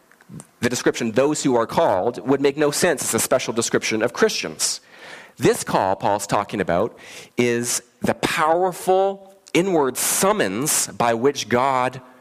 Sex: male